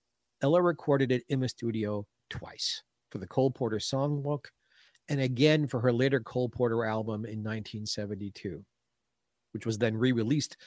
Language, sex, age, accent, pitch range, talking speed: English, male, 50-69, American, 115-160 Hz, 150 wpm